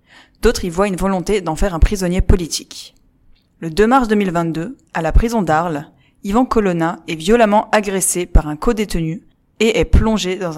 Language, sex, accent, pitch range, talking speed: French, female, French, 170-220 Hz, 170 wpm